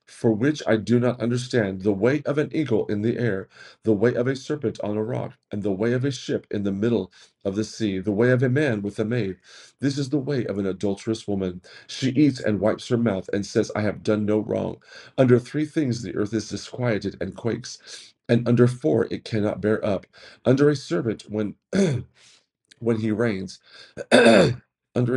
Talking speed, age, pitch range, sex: 205 wpm, 40-59, 105-130 Hz, male